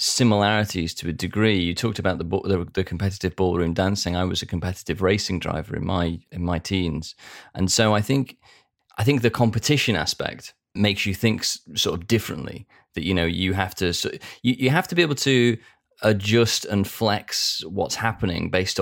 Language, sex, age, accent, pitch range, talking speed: English, male, 30-49, British, 95-110 Hz, 190 wpm